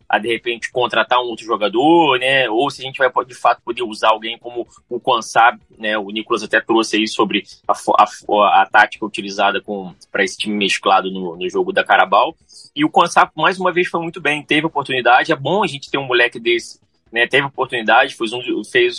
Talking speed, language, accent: 220 wpm, Portuguese, Brazilian